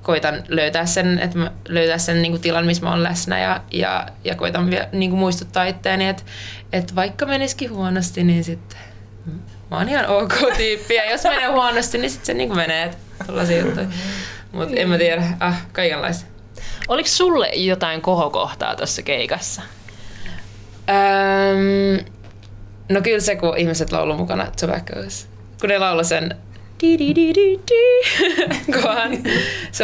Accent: native